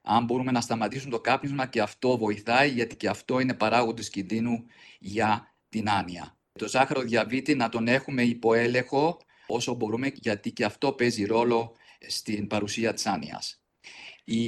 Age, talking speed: 40-59, 150 wpm